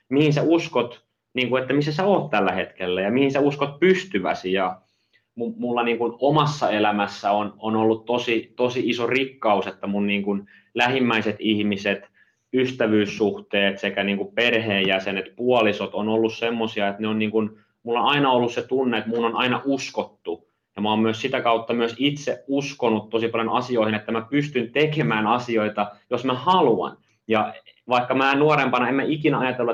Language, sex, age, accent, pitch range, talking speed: Finnish, male, 30-49, native, 110-130 Hz, 180 wpm